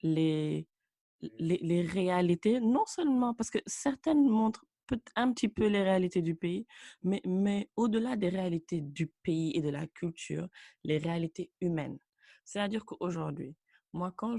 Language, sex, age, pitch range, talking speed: English, female, 20-39, 160-215 Hz, 145 wpm